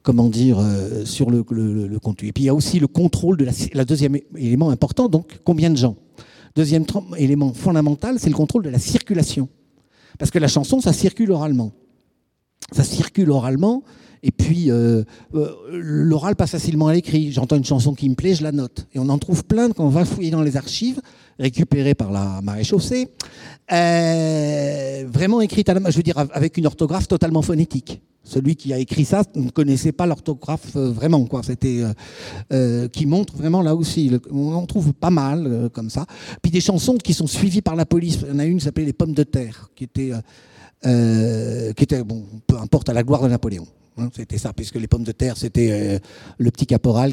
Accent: French